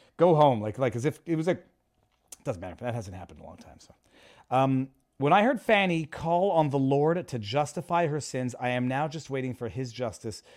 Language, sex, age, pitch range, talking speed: English, male, 40-59, 125-170 Hz, 225 wpm